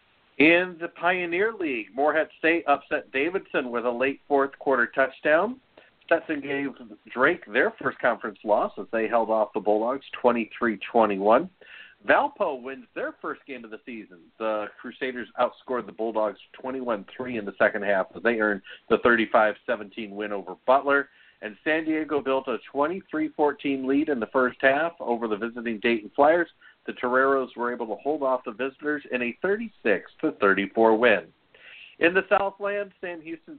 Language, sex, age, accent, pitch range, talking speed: English, male, 50-69, American, 115-155 Hz, 160 wpm